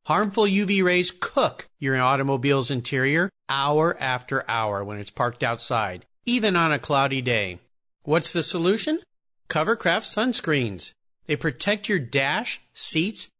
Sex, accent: male, American